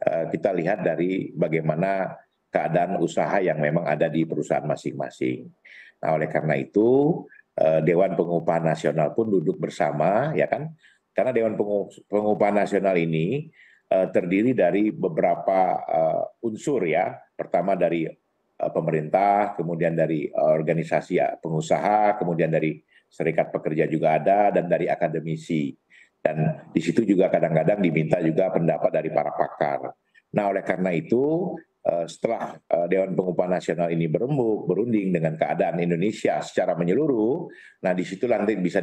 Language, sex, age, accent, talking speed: Indonesian, male, 50-69, native, 130 wpm